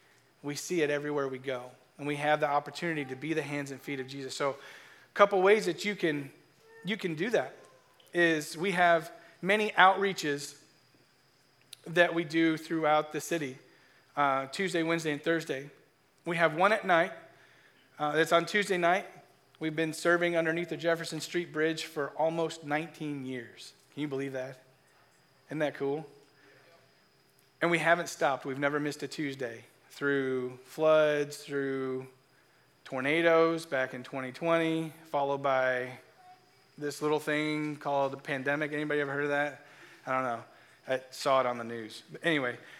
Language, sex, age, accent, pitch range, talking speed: English, male, 40-59, American, 135-165 Hz, 160 wpm